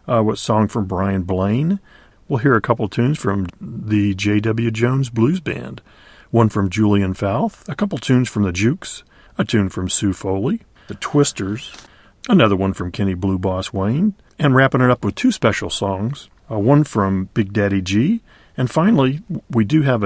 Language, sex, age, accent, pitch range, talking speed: English, male, 40-59, American, 100-125 Hz, 180 wpm